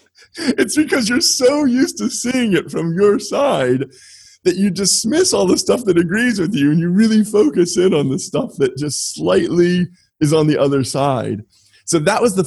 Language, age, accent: English, 30-49, American